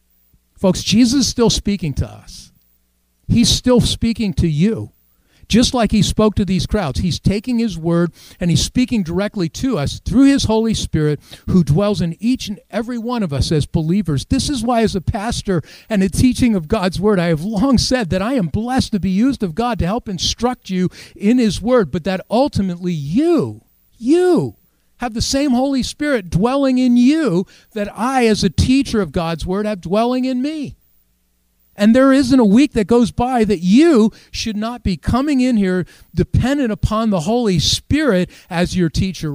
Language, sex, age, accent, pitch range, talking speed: English, male, 50-69, American, 165-235 Hz, 190 wpm